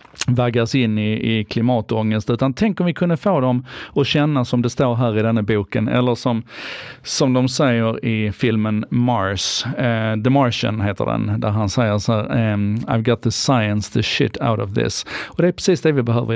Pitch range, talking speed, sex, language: 110-130 Hz, 210 wpm, male, Swedish